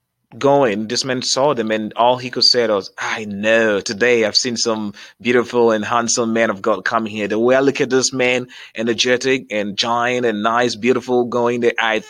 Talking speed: 205 wpm